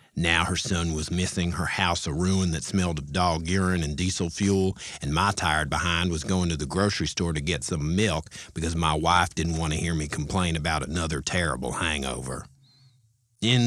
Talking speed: 200 wpm